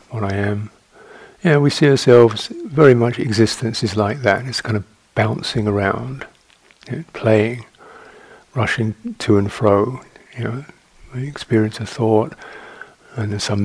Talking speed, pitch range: 140 wpm, 105-125 Hz